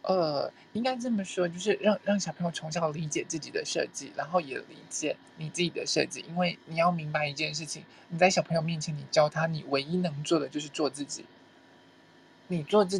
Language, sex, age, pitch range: Chinese, male, 20-39, 160-190 Hz